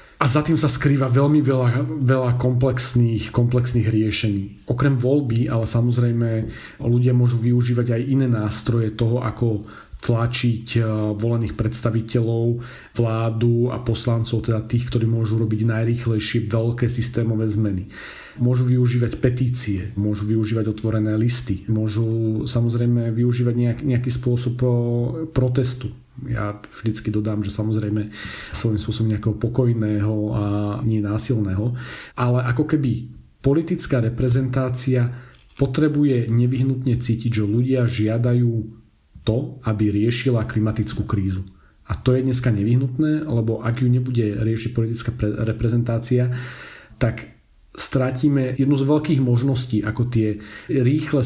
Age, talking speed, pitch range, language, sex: 40-59, 115 wpm, 110-125 Hz, Slovak, male